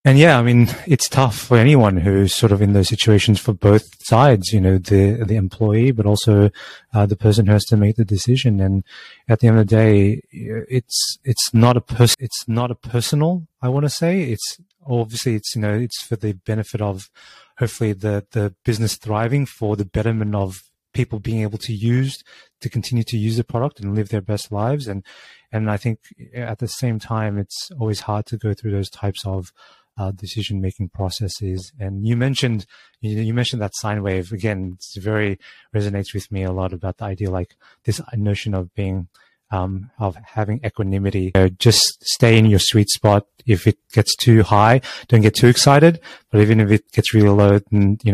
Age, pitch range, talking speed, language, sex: 30-49, 100-120 Hz, 205 wpm, English, male